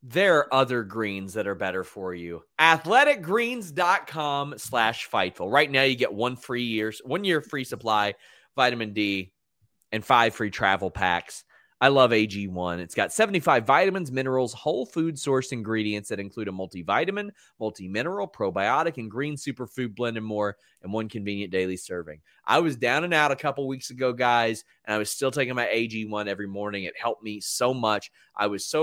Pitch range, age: 110-140 Hz, 30-49